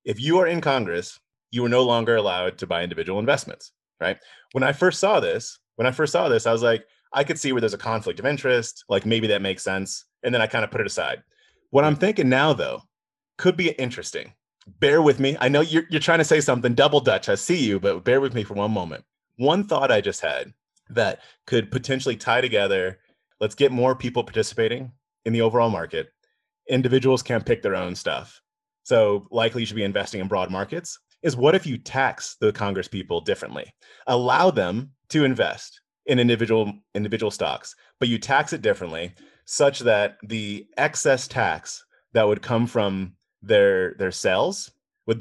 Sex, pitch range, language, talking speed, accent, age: male, 110-165 Hz, English, 200 wpm, American, 30-49